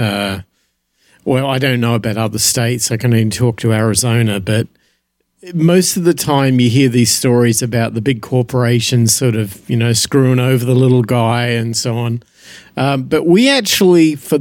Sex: male